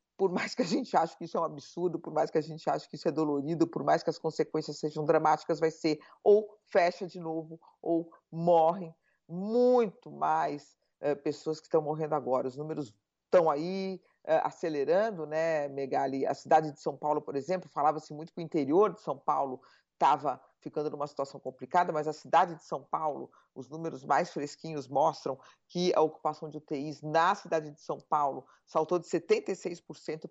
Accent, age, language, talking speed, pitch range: Brazilian, 50-69, Portuguese, 185 wpm, 145-170 Hz